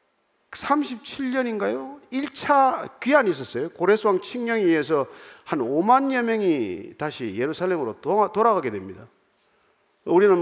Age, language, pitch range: 50-69, Korean, 160-245 Hz